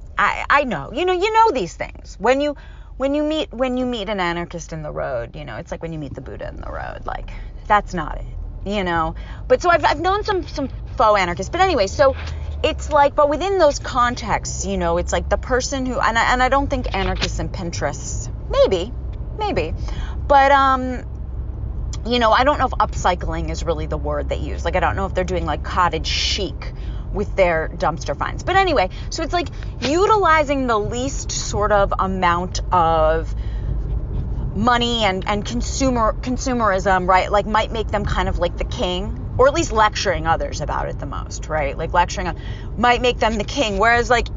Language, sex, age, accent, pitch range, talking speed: English, female, 30-49, American, 180-290 Hz, 205 wpm